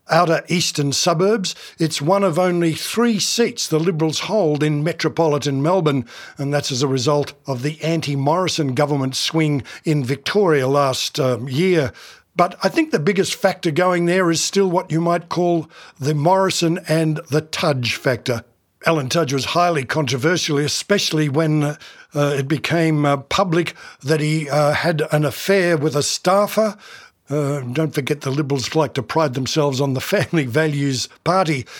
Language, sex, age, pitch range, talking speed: English, male, 60-79, 145-180 Hz, 160 wpm